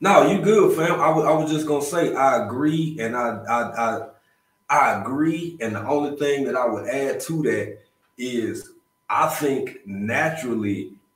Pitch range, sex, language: 110-155 Hz, male, English